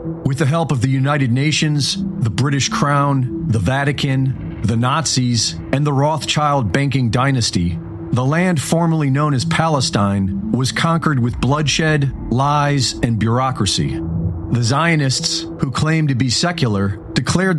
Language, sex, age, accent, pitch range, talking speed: English, male, 40-59, American, 125-160 Hz, 135 wpm